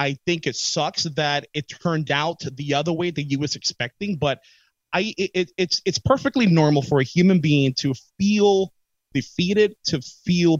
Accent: American